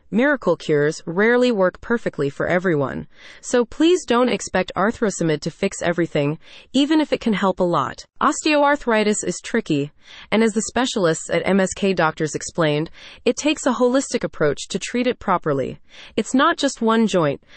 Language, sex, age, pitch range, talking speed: English, female, 30-49, 175-240 Hz, 160 wpm